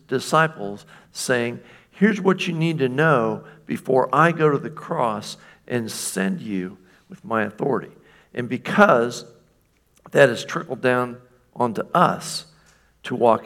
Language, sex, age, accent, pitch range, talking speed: English, male, 50-69, American, 120-160 Hz, 135 wpm